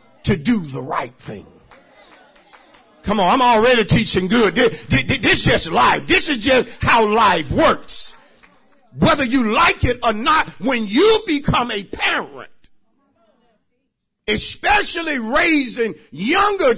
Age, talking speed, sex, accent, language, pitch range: 50-69, 130 wpm, male, American, English, 190-315 Hz